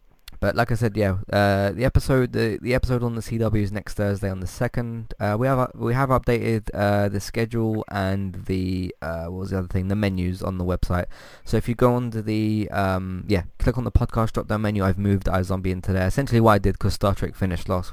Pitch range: 90-110 Hz